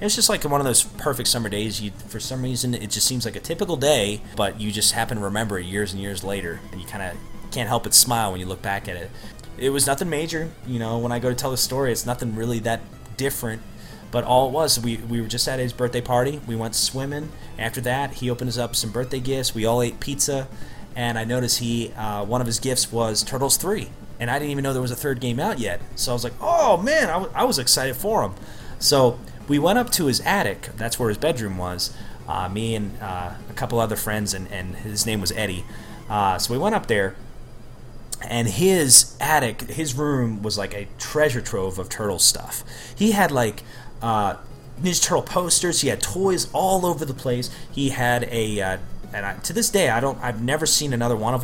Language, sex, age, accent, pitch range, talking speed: English, male, 20-39, American, 105-130 Hz, 235 wpm